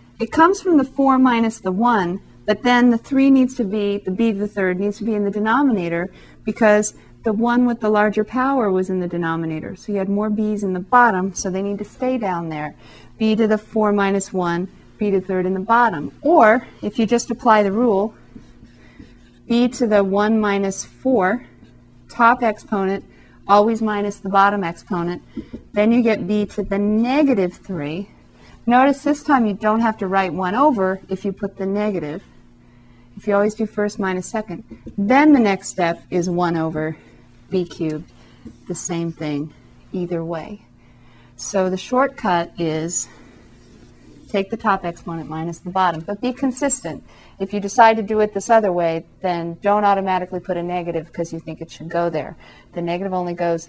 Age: 40-59